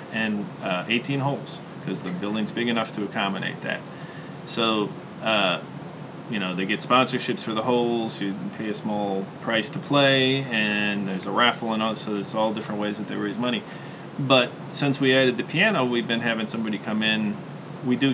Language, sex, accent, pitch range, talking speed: English, male, American, 105-135 Hz, 190 wpm